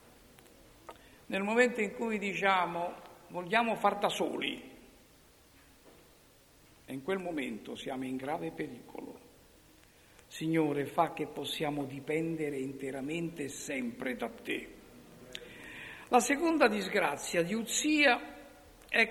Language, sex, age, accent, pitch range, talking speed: Italian, male, 60-79, native, 170-255 Hz, 105 wpm